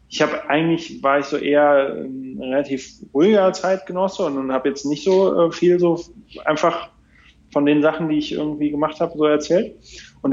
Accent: German